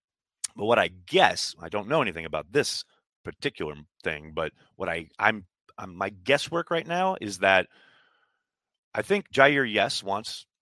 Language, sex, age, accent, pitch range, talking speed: English, male, 30-49, American, 85-110 Hz, 145 wpm